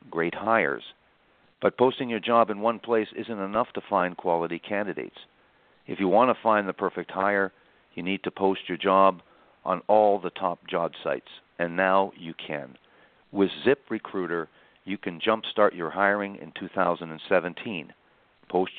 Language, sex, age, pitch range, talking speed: English, male, 50-69, 90-110 Hz, 160 wpm